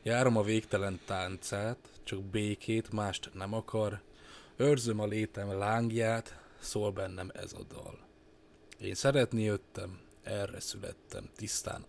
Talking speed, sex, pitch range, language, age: 120 wpm, male, 100-115 Hz, Hungarian, 20-39